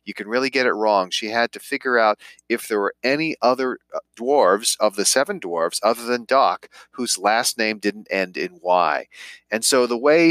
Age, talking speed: 40-59, 205 wpm